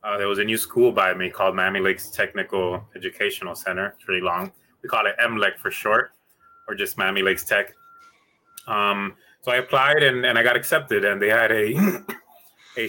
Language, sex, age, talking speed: English, male, 20-39, 200 wpm